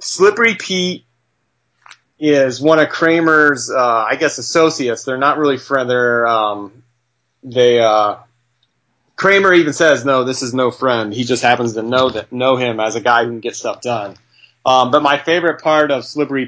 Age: 30-49